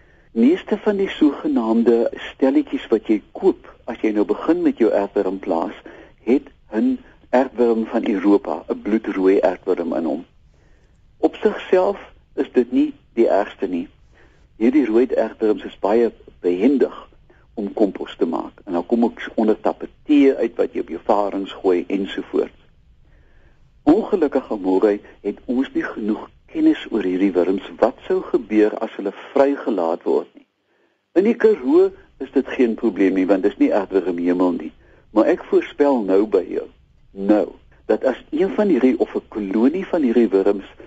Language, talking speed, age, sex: English, 160 wpm, 60-79, male